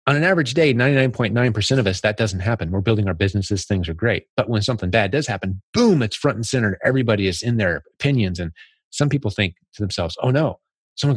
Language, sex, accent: English, male, American